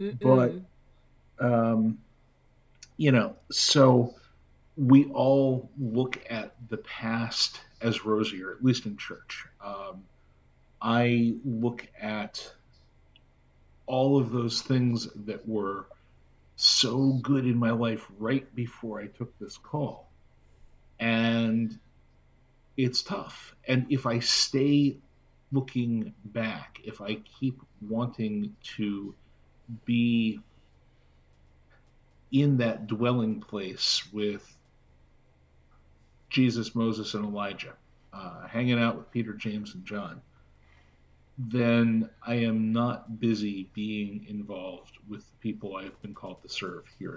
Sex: male